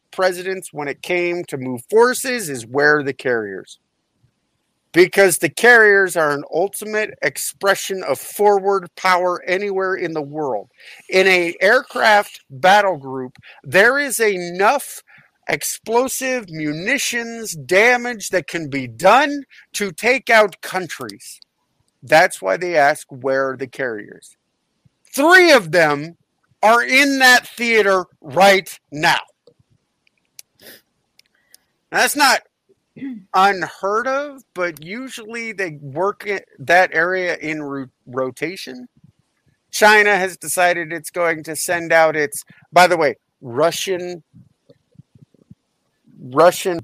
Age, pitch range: 50-69, 150-210 Hz